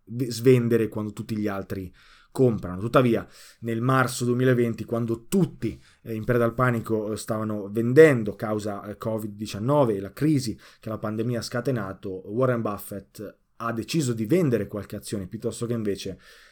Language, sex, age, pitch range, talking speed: Italian, male, 20-39, 110-135 Hz, 145 wpm